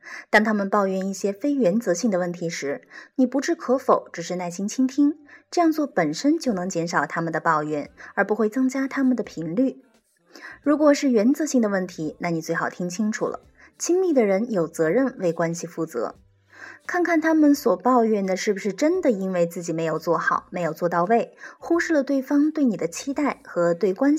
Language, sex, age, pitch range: Chinese, female, 20-39, 170-270 Hz